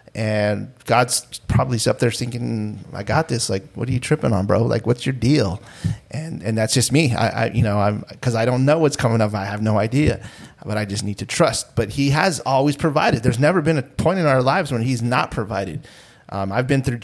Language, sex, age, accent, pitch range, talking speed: English, male, 30-49, American, 110-140 Hz, 240 wpm